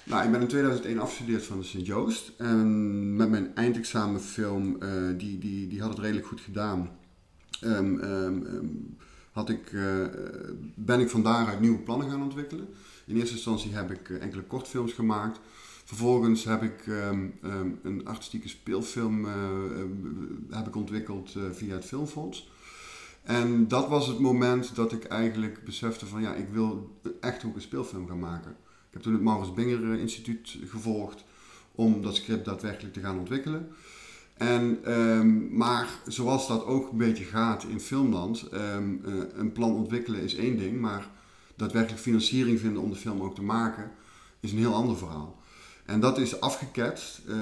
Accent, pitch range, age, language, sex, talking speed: Dutch, 100-115 Hz, 50-69, Dutch, male, 145 wpm